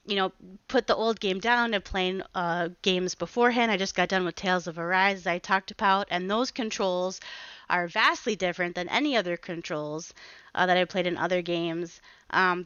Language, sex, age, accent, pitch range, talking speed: English, female, 30-49, American, 180-220 Hz, 200 wpm